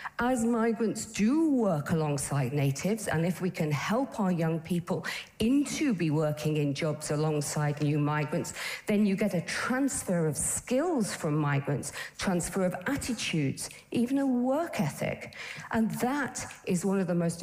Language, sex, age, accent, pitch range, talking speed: English, female, 50-69, British, 155-230 Hz, 155 wpm